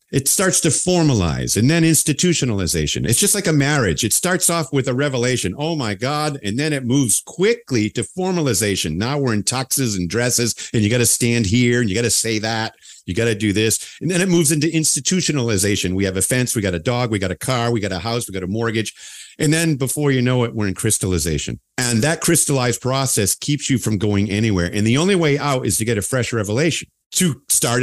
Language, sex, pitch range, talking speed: English, male, 105-150 Hz, 235 wpm